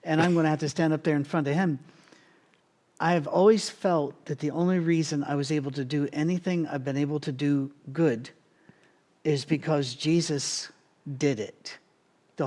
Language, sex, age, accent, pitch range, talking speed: English, male, 50-69, American, 145-170 Hz, 185 wpm